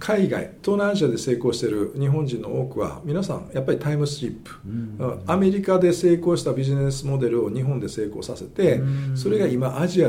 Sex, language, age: male, Japanese, 50-69